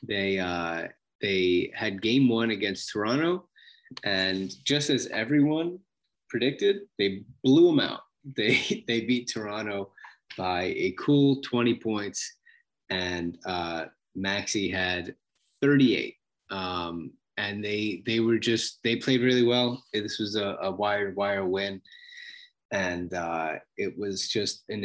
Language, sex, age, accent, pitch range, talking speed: English, male, 20-39, American, 95-130 Hz, 130 wpm